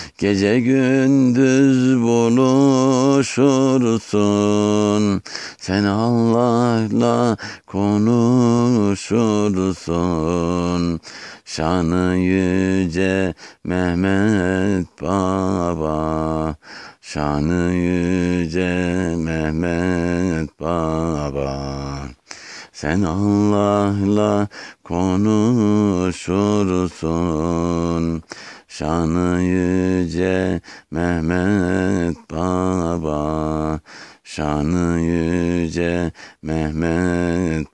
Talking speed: 40 wpm